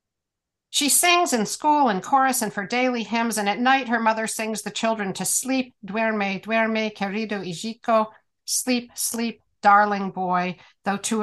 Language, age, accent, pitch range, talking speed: English, 50-69, American, 185-230 Hz, 160 wpm